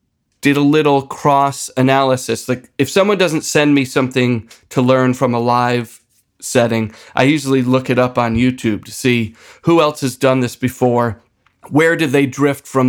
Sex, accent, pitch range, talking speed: male, American, 120-140 Hz, 170 wpm